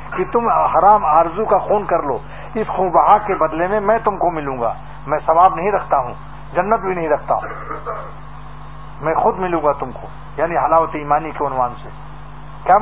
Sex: male